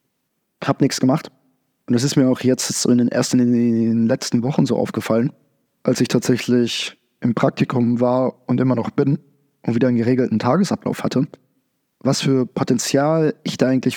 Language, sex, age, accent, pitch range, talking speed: German, male, 20-39, German, 125-140 Hz, 180 wpm